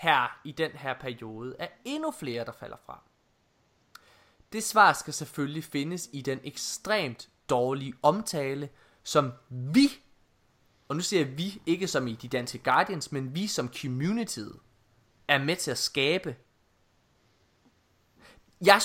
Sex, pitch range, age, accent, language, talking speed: male, 125-195 Hz, 20-39, native, Danish, 135 wpm